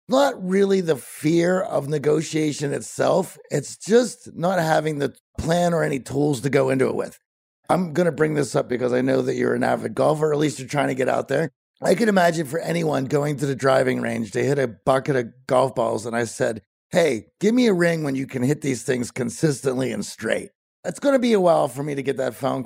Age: 50-69